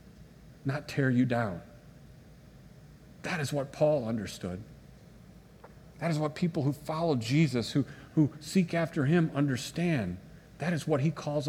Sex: male